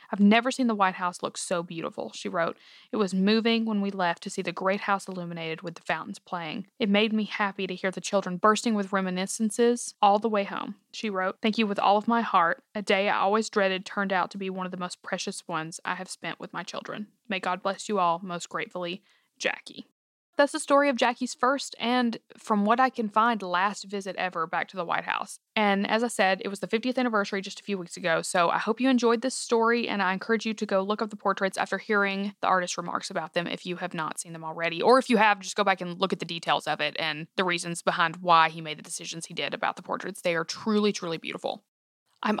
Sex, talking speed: female, 255 wpm